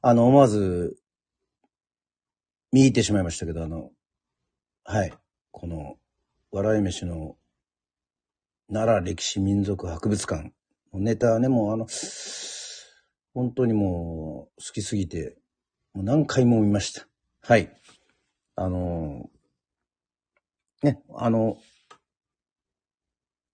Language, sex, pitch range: Japanese, male, 80-115 Hz